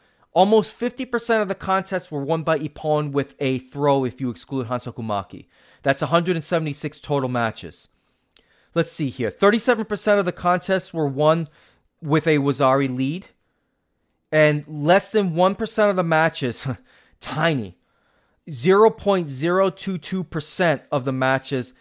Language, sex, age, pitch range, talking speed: English, male, 30-49, 135-190 Hz, 125 wpm